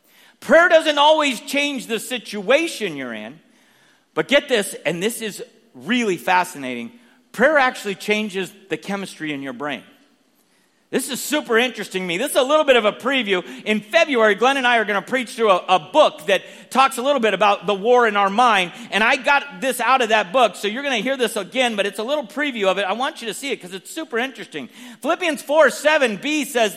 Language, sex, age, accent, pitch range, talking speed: English, male, 50-69, American, 210-275 Hz, 220 wpm